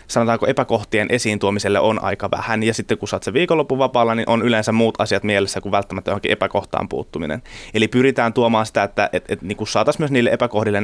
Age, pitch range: 20-39, 105-120 Hz